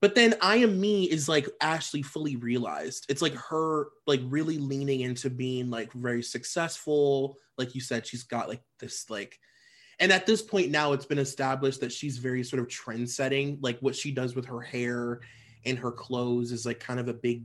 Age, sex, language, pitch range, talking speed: 20-39, male, English, 120-150 Hz, 205 wpm